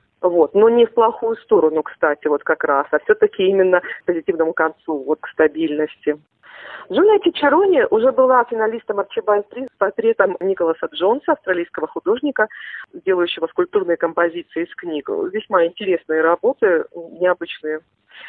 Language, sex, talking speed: Russian, female, 130 wpm